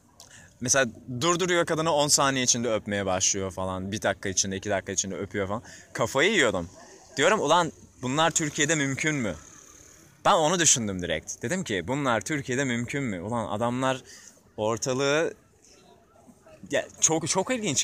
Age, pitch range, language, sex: 20-39, 105-140 Hz, Turkish, male